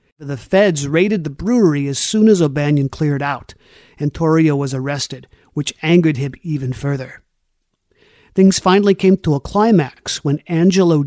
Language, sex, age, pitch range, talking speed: English, male, 50-69, 140-165 Hz, 150 wpm